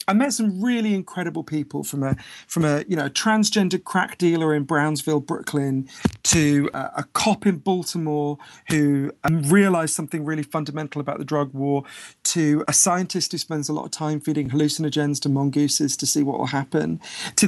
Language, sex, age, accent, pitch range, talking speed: English, male, 40-59, British, 150-205 Hz, 175 wpm